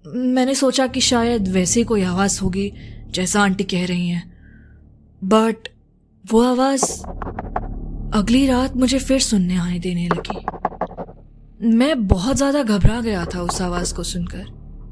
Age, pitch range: 20-39, 180-260 Hz